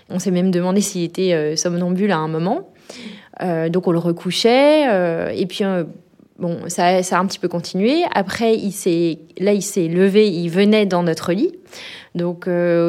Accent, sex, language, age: French, female, French, 20-39